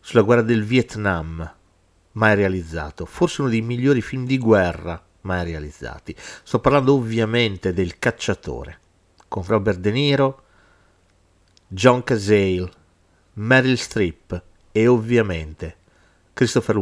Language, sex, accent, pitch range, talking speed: Italian, male, native, 90-115 Hz, 110 wpm